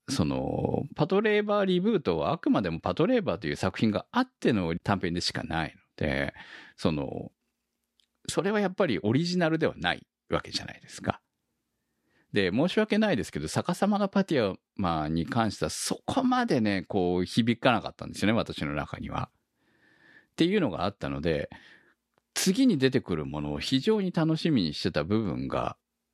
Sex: male